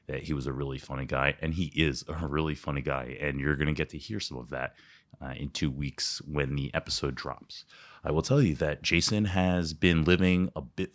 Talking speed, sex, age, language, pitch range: 235 wpm, male, 30-49, English, 70-90 Hz